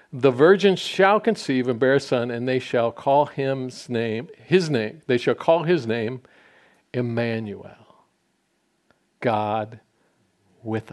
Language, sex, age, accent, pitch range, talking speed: English, male, 50-69, American, 125-185 Hz, 130 wpm